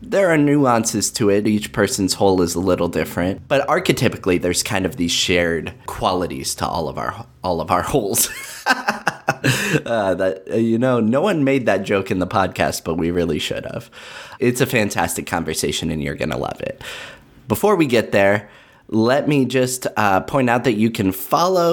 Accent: American